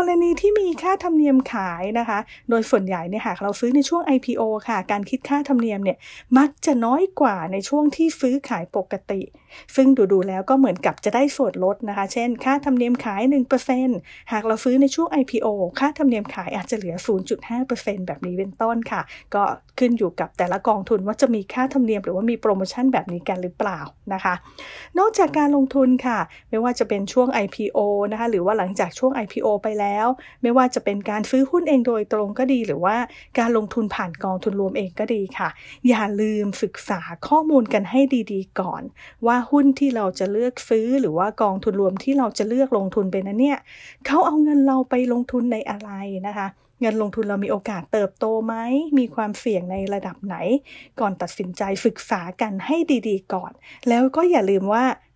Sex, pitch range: female, 200-265 Hz